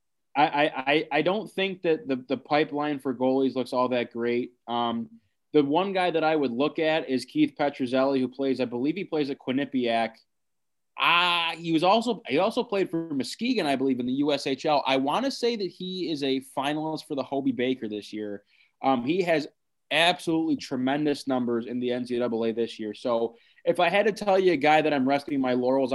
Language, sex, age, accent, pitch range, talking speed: English, male, 20-39, American, 125-150 Hz, 205 wpm